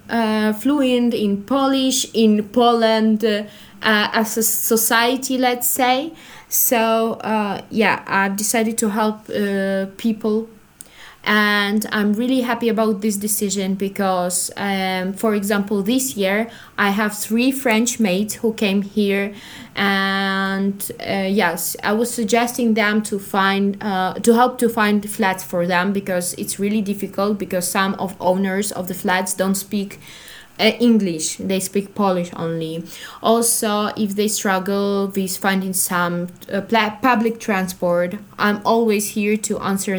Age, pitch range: 20-39, 195-225 Hz